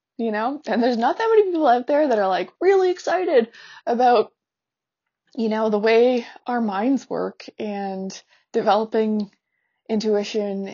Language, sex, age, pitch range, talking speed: English, female, 20-39, 190-245 Hz, 145 wpm